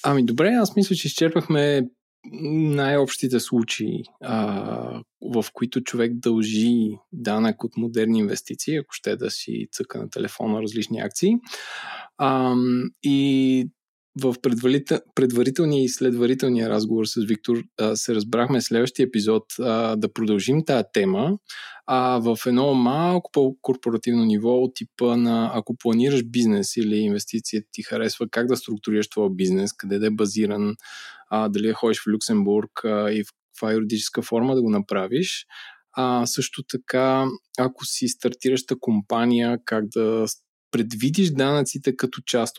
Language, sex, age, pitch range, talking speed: Bulgarian, male, 20-39, 110-135 Hz, 130 wpm